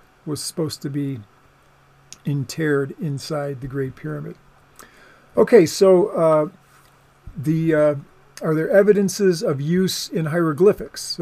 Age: 50-69